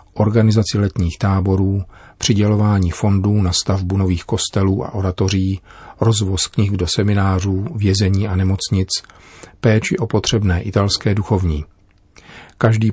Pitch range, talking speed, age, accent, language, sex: 95-105 Hz, 110 wpm, 40-59, native, Czech, male